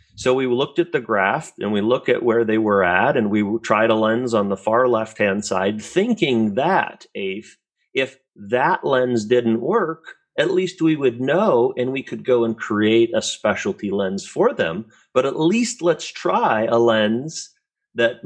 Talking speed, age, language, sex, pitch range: 180 wpm, 40-59, English, male, 110-135 Hz